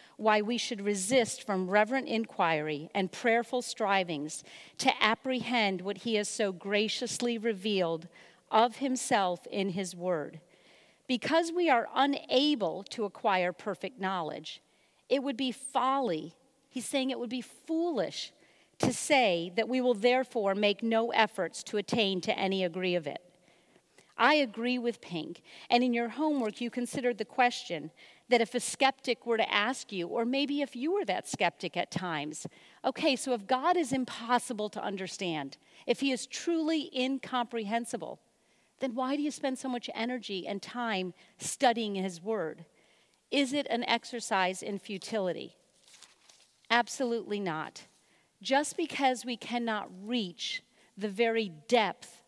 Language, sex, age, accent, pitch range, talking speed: English, female, 50-69, American, 190-255 Hz, 145 wpm